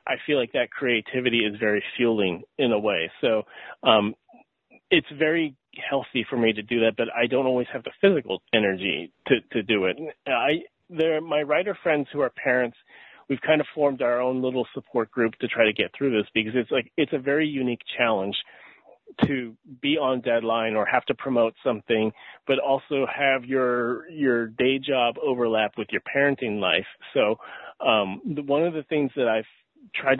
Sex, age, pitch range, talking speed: male, 30-49, 115-140 Hz, 190 wpm